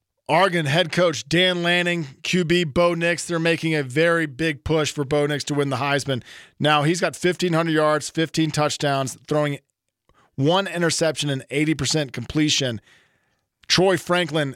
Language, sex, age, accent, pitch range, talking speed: English, male, 40-59, American, 140-170 Hz, 150 wpm